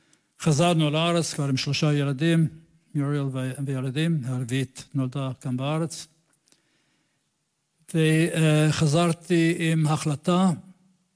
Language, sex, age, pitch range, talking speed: Hebrew, male, 60-79, 145-165 Hz, 80 wpm